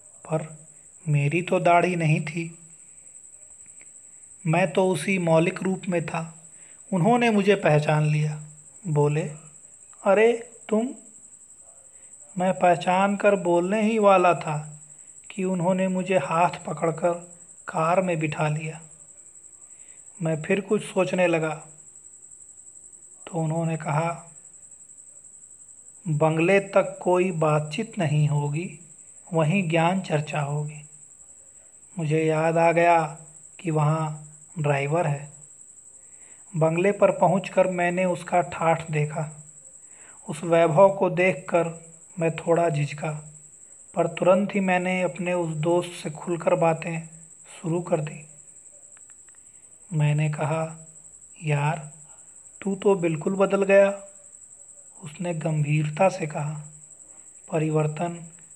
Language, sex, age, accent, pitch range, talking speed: Hindi, male, 30-49, native, 155-185 Hz, 105 wpm